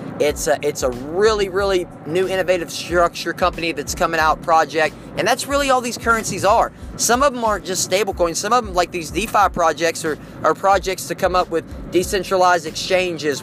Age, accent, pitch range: 20-39, American, 160-205 Hz